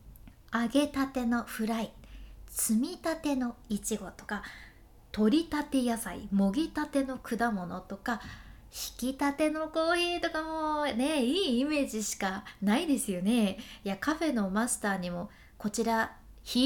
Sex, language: female, Japanese